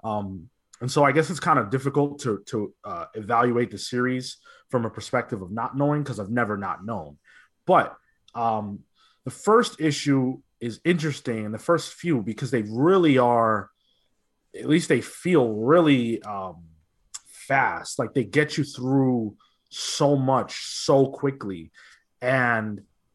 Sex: male